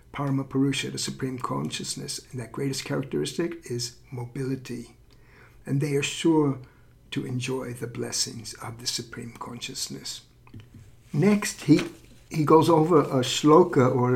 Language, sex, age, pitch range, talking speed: English, male, 60-79, 125-165 Hz, 130 wpm